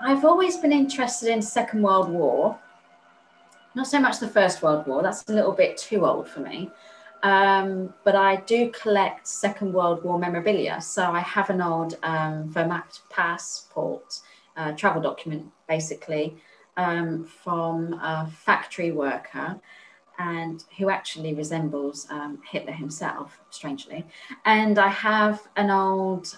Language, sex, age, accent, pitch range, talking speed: English, female, 30-49, British, 165-210 Hz, 140 wpm